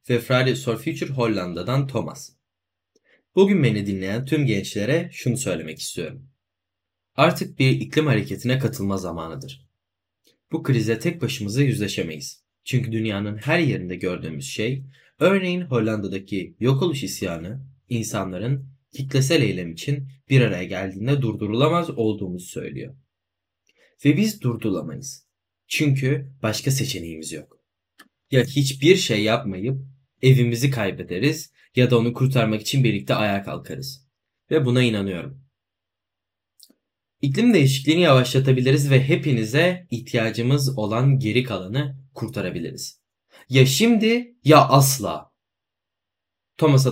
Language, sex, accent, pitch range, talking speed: Turkish, male, native, 105-140 Hz, 105 wpm